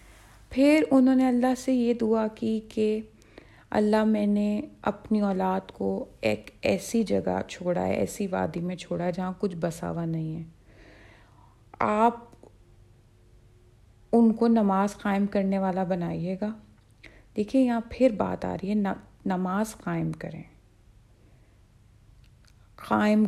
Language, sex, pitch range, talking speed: Urdu, female, 145-210 Hz, 130 wpm